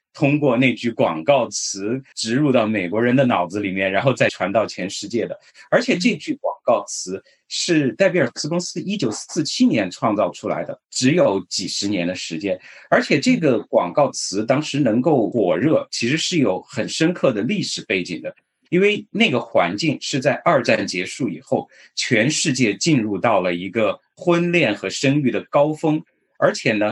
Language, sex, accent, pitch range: Chinese, male, native, 105-170 Hz